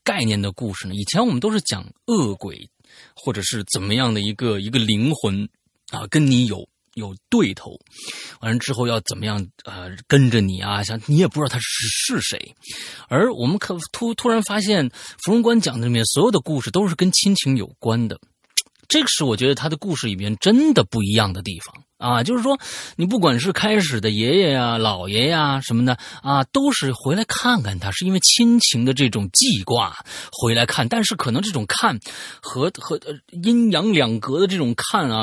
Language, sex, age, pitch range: Chinese, male, 30-49, 110-185 Hz